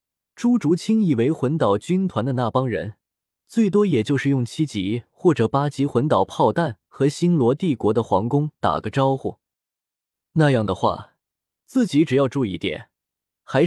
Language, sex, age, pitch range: Chinese, male, 20-39, 110-160 Hz